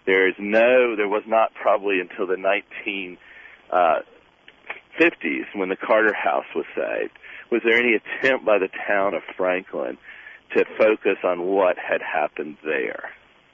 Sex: male